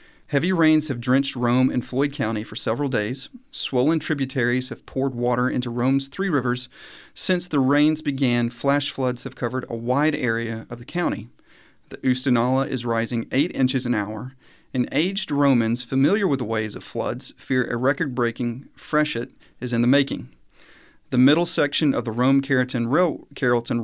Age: 40-59